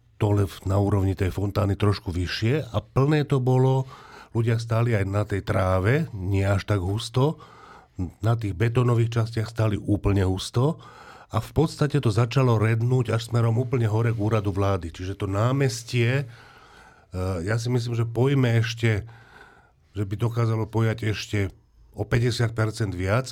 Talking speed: 145 wpm